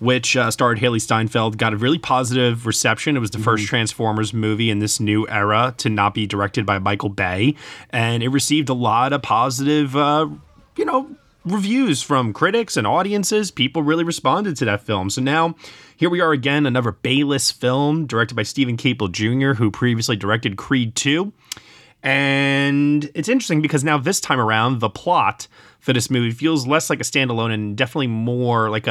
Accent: American